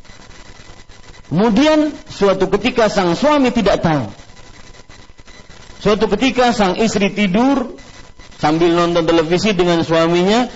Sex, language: male, Malay